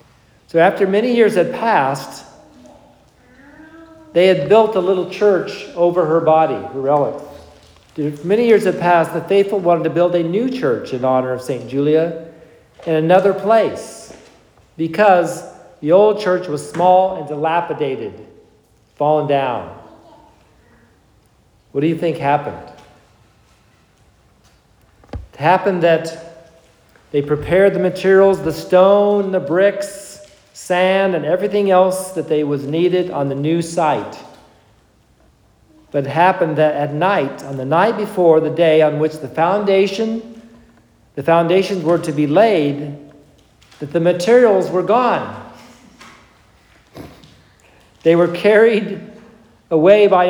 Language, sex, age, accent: English, male, 50-69, American